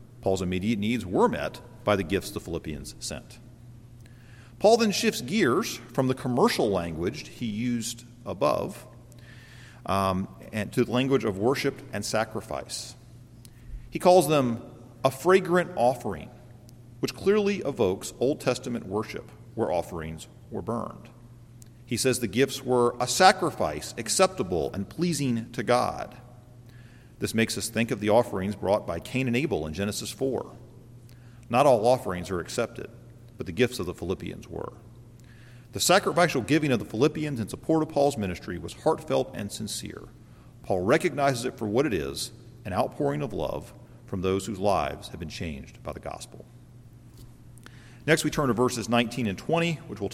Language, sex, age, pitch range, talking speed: English, male, 40-59, 115-130 Hz, 160 wpm